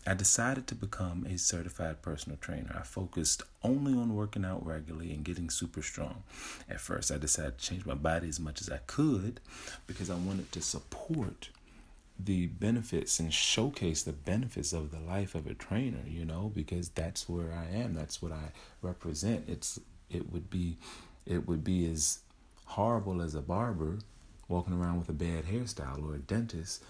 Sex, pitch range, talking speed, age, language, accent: male, 80-100 Hz, 180 wpm, 40-59, English, American